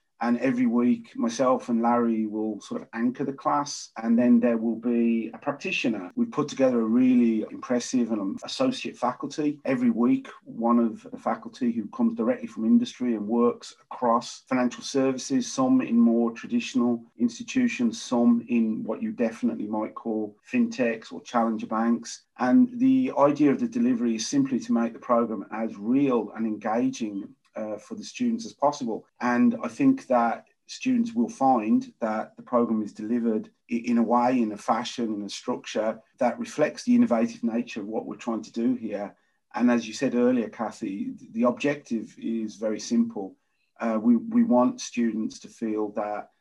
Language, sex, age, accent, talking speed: English, male, 40-59, British, 175 wpm